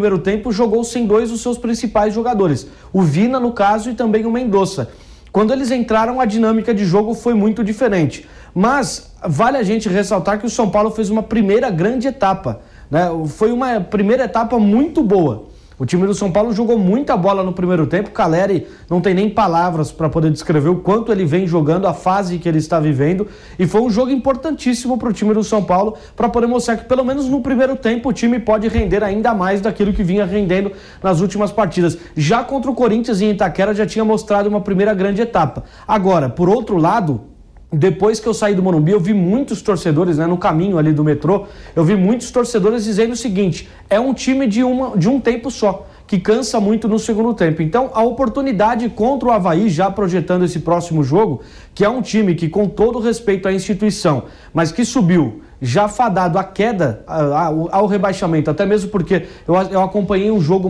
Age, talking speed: 20-39, 200 wpm